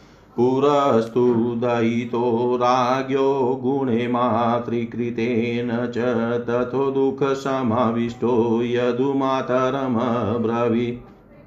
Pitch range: 115-130 Hz